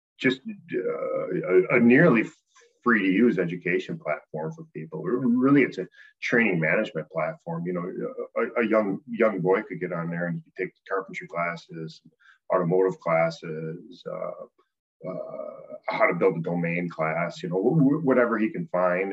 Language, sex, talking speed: English, male, 165 wpm